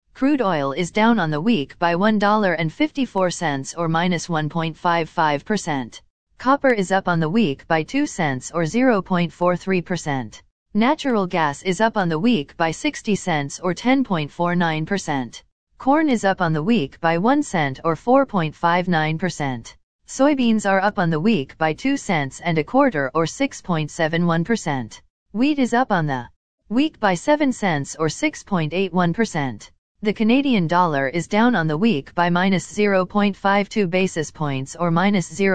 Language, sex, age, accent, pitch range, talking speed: English, female, 40-59, American, 160-220 Hz, 145 wpm